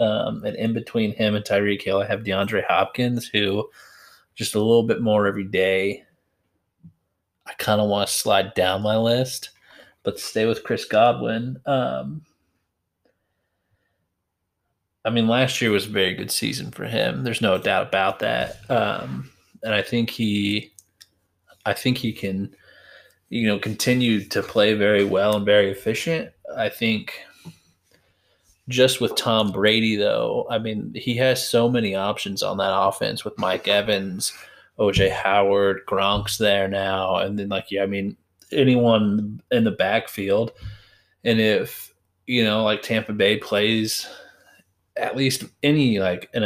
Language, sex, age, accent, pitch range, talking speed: English, male, 20-39, American, 100-115 Hz, 150 wpm